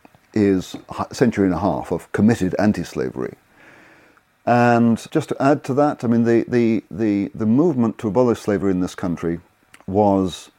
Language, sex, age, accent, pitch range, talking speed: English, male, 40-59, British, 85-105 Hz, 165 wpm